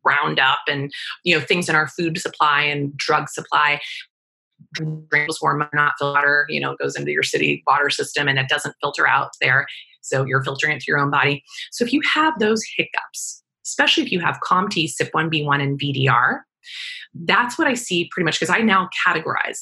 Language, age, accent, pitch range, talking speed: English, 30-49, American, 140-195 Hz, 210 wpm